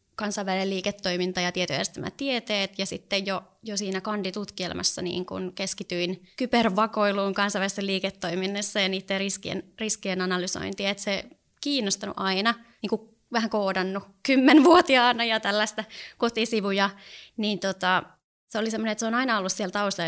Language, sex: Finnish, female